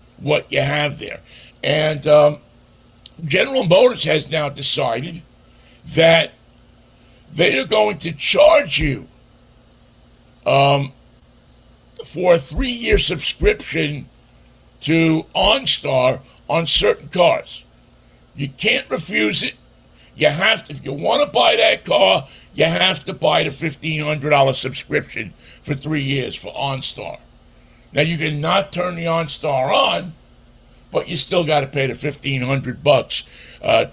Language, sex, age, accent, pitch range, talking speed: English, male, 60-79, American, 135-165 Hz, 120 wpm